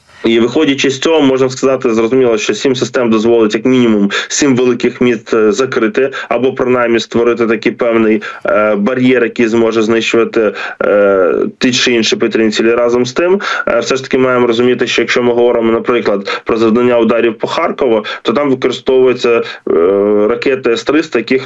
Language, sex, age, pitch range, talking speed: Ukrainian, male, 20-39, 110-130 Hz, 160 wpm